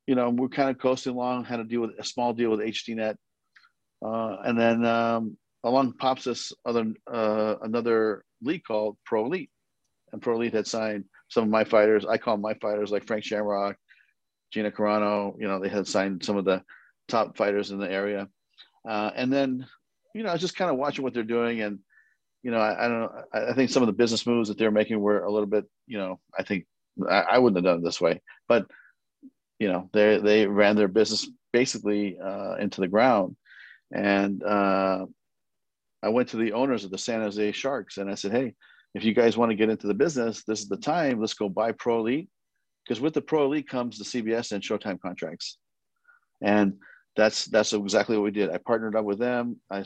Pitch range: 105-120 Hz